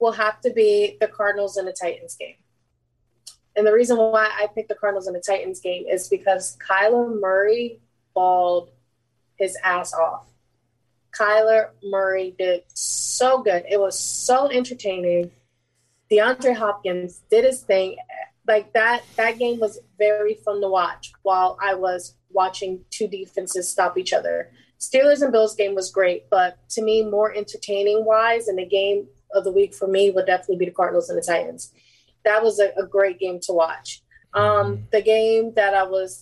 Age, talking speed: 20-39, 170 wpm